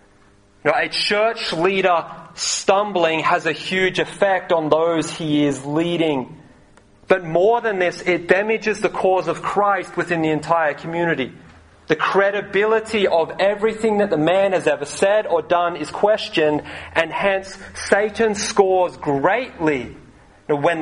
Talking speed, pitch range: 135 wpm, 150-195 Hz